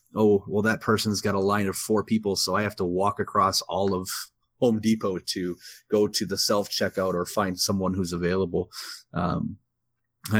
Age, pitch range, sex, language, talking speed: 30-49, 85-100 Hz, male, English, 185 wpm